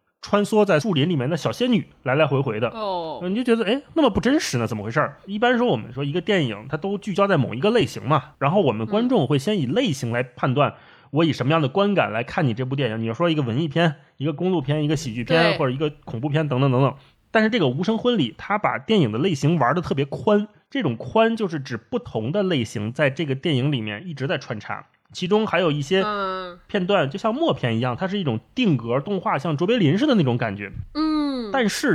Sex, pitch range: male, 135-205 Hz